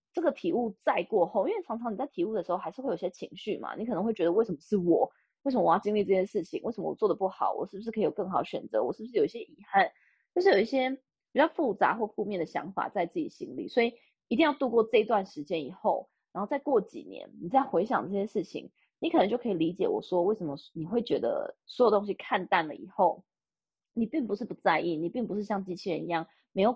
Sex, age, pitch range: female, 20-39, 190-270 Hz